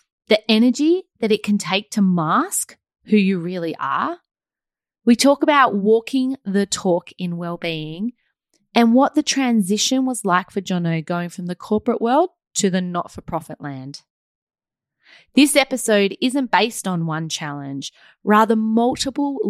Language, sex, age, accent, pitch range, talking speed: English, female, 30-49, Australian, 175-230 Hz, 140 wpm